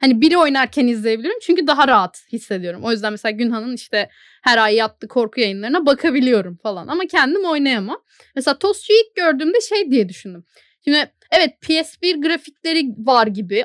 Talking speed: 160 wpm